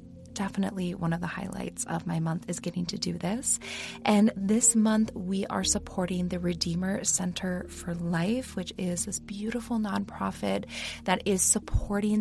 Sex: female